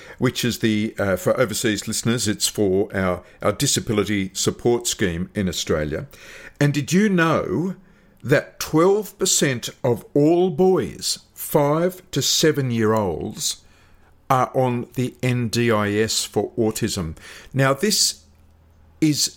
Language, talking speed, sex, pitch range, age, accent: English, 115 wpm, male, 100-140 Hz, 50-69, Australian